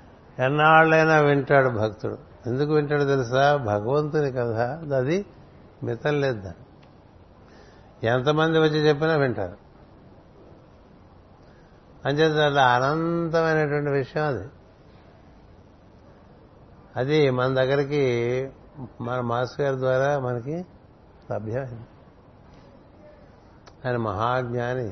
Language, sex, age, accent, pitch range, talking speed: Telugu, male, 60-79, native, 110-145 Hz, 75 wpm